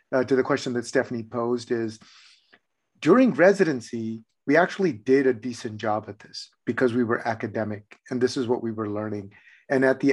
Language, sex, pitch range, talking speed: English, male, 115-135 Hz, 190 wpm